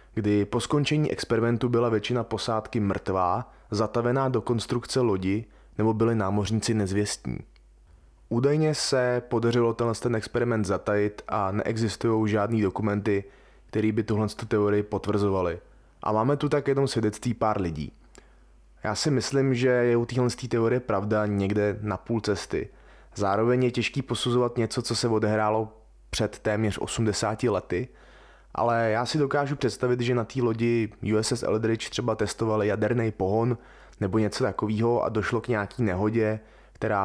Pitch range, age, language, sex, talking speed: 105-120 Hz, 20-39, Czech, male, 145 wpm